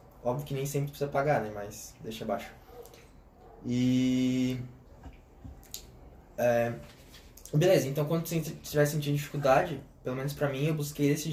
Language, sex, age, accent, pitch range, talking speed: Portuguese, male, 10-29, Brazilian, 130-155 Hz, 140 wpm